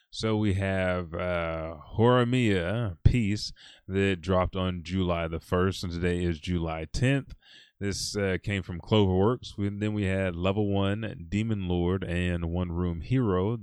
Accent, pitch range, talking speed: American, 85-105 Hz, 155 wpm